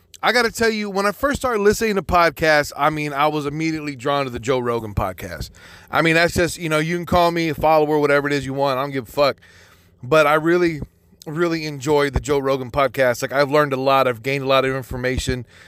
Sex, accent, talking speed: male, American, 250 wpm